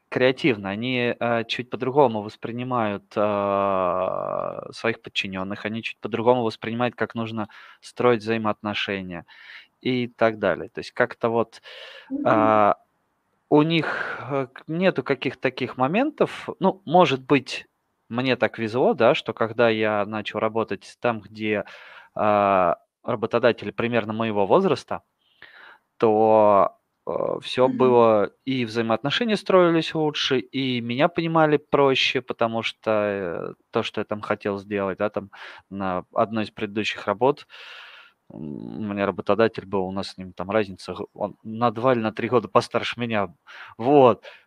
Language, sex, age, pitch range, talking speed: Russian, male, 20-39, 105-130 Hz, 130 wpm